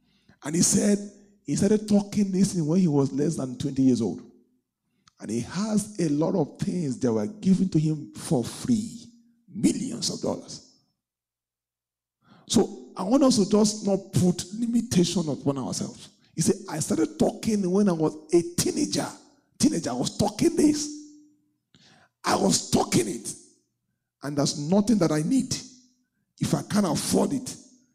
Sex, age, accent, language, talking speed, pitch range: male, 50-69, Nigerian, English, 160 wpm, 140-230 Hz